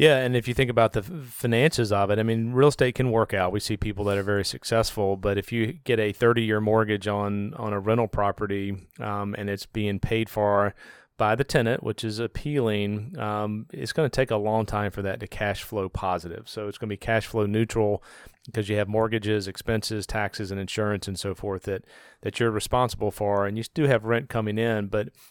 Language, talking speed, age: English, 225 wpm, 30-49